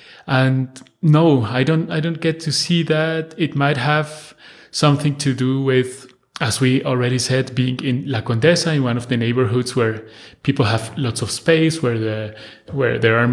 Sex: male